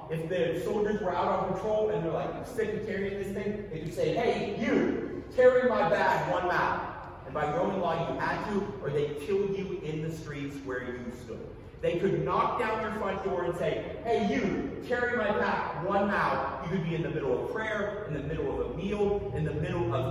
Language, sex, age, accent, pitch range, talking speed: English, male, 40-59, American, 140-190 Hz, 225 wpm